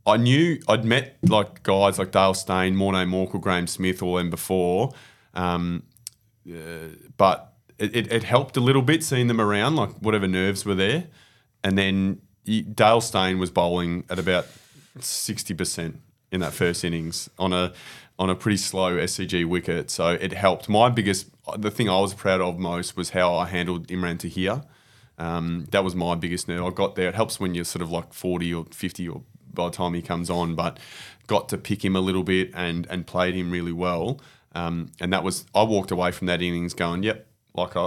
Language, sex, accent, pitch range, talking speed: English, male, Australian, 85-100 Hz, 205 wpm